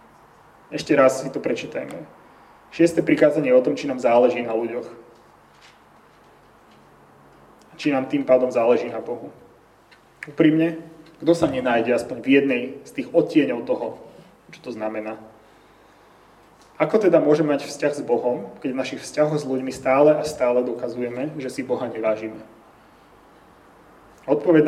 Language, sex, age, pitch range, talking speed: Slovak, male, 30-49, 125-160 Hz, 140 wpm